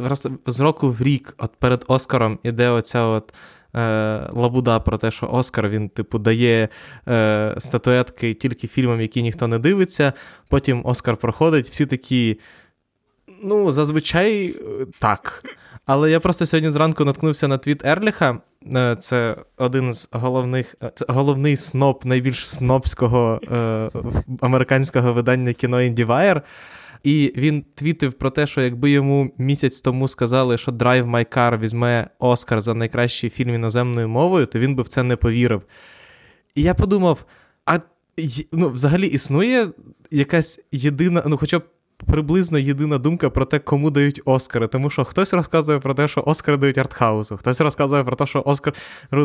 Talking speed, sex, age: 150 wpm, male, 20-39